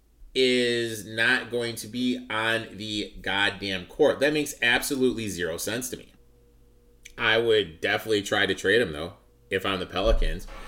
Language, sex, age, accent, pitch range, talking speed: English, male, 30-49, American, 95-120 Hz, 155 wpm